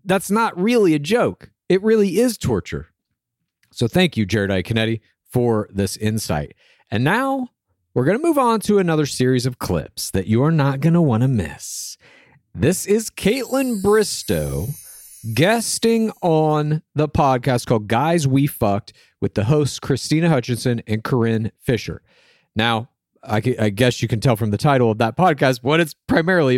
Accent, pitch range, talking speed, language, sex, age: American, 115-170 Hz, 165 wpm, English, male, 40-59